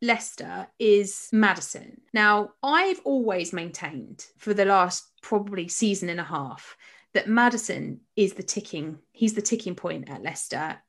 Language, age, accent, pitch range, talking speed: English, 30-49, British, 185-225 Hz, 145 wpm